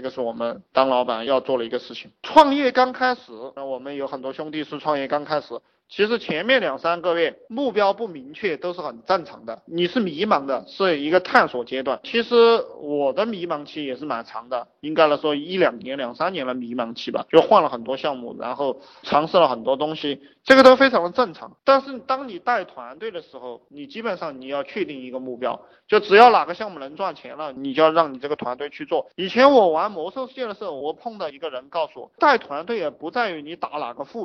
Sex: male